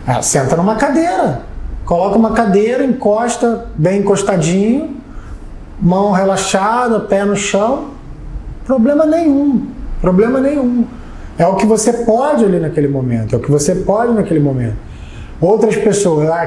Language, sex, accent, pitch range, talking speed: Portuguese, male, Brazilian, 150-210 Hz, 130 wpm